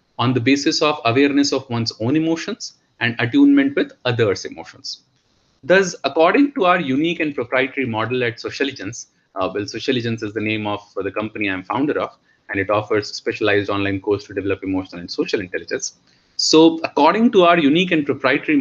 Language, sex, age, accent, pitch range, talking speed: English, male, 30-49, Indian, 115-175 Hz, 185 wpm